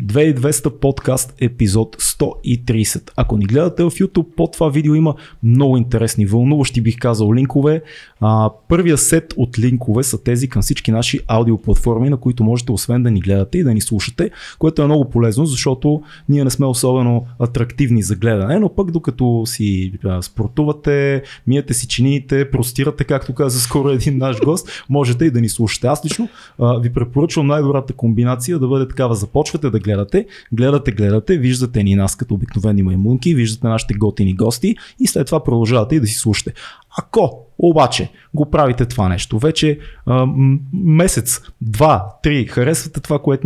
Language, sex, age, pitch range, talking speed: Bulgarian, male, 20-39, 115-145 Hz, 170 wpm